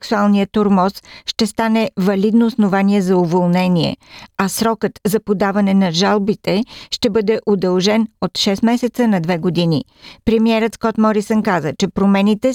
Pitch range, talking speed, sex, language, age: 185-220 Hz, 140 wpm, female, Bulgarian, 50-69